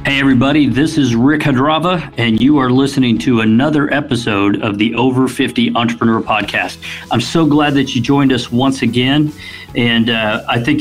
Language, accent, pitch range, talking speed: English, American, 115-140 Hz, 180 wpm